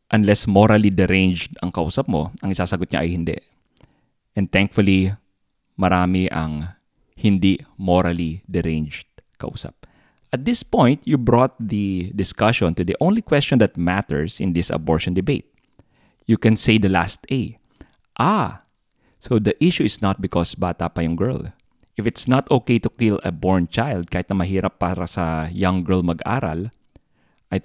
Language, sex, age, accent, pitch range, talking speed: English, male, 20-39, Filipino, 85-115 Hz, 155 wpm